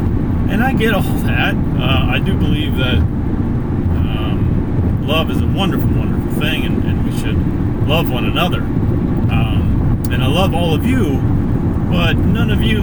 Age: 30-49